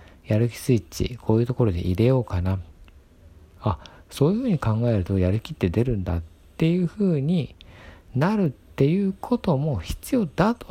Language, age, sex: Japanese, 50-69, male